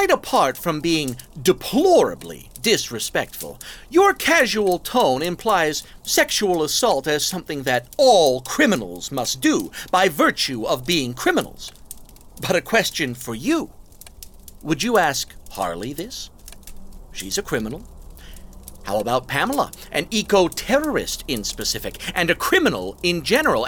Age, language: 50-69, English